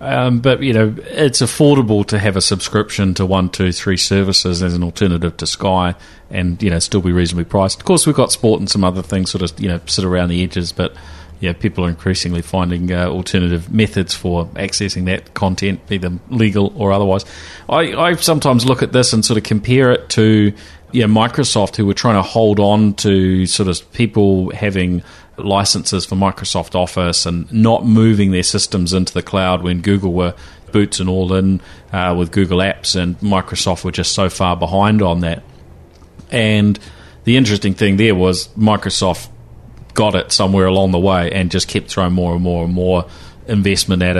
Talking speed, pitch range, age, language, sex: 200 wpm, 90-100 Hz, 30-49, English, male